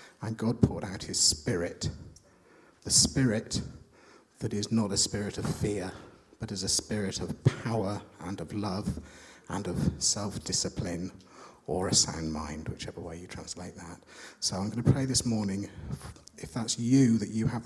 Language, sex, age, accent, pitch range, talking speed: English, male, 50-69, British, 100-115 Hz, 170 wpm